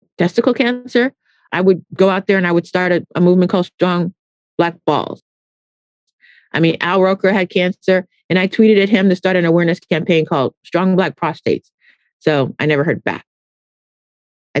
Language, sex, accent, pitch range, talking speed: English, female, American, 160-210 Hz, 180 wpm